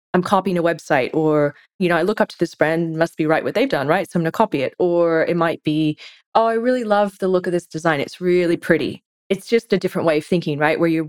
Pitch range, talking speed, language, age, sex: 155-185 Hz, 275 wpm, English, 20-39, female